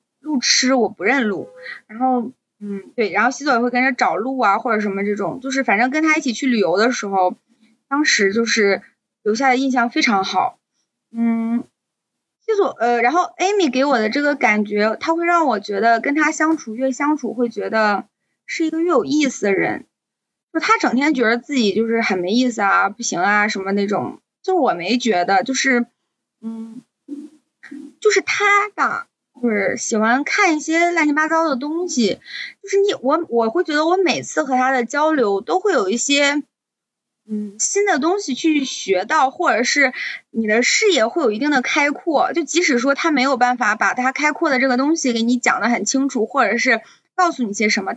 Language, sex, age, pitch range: Chinese, female, 20-39, 225-310 Hz